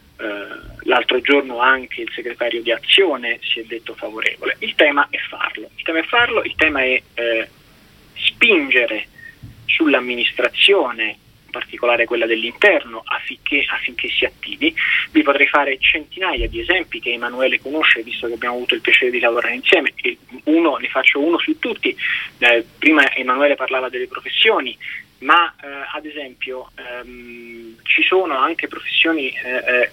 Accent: native